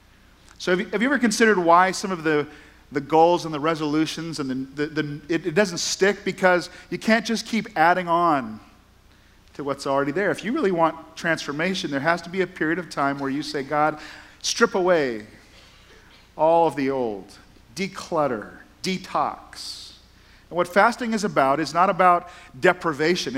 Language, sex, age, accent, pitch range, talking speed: English, male, 40-59, American, 140-180 Hz, 170 wpm